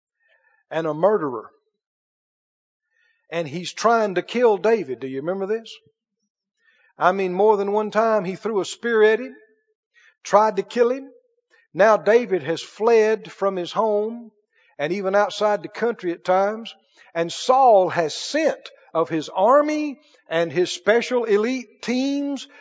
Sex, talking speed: male, 145 wpm